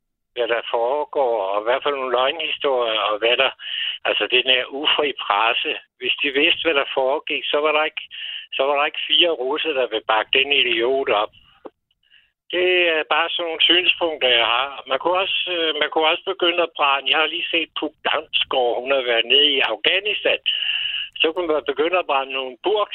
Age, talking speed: 60-79, 200 wpm